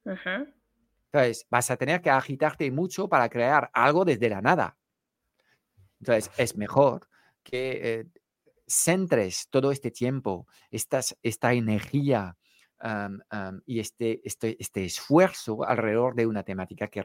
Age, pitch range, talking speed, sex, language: 50-69, 115-150 Hz, 130 wpm, male, Spanish